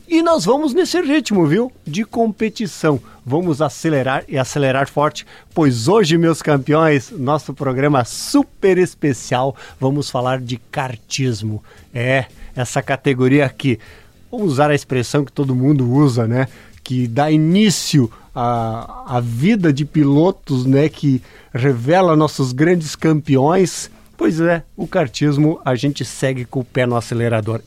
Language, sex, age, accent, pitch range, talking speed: Portuguese, male, 50-69, Brazilian, 120-150 Hz, 140 wpm